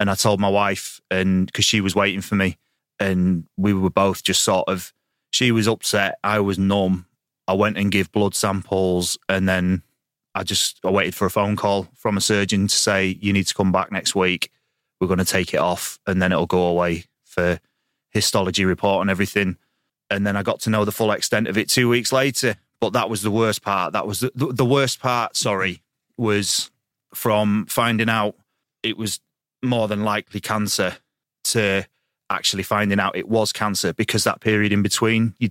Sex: male